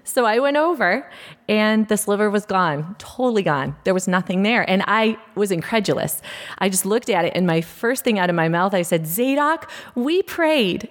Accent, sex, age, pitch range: American, female, 30-49, 165-230 Hz